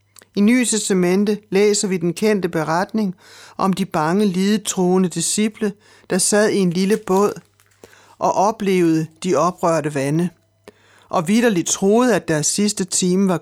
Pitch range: 160-200 Hz